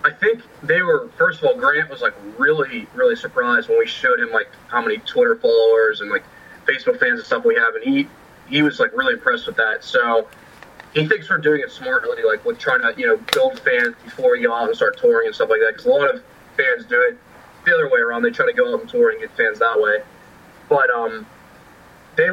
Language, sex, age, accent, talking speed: English, male, 20-39, American, 240 wpm